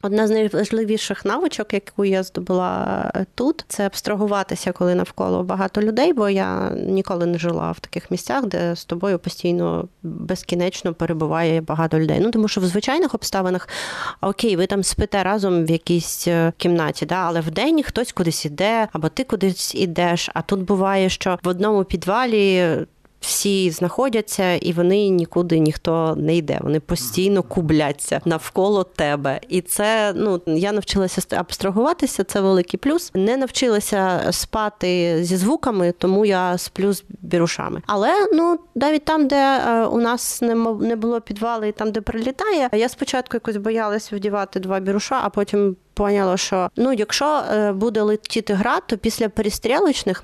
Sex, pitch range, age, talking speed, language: female, 175-225 Hz, 30-49, 150 wpm, Ukrainian